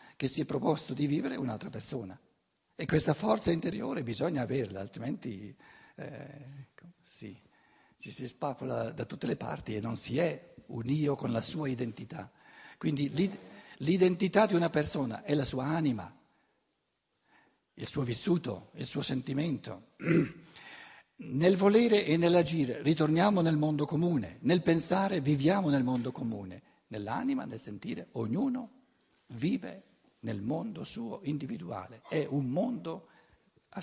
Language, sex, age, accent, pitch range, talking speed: Italian, male, 60-79, native, 125-170 Hz, 135 wpm